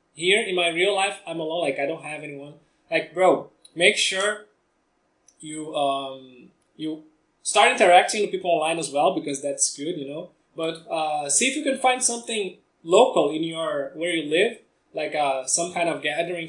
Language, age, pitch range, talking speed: English, 20-39, 145-195 Hz, 185 wpm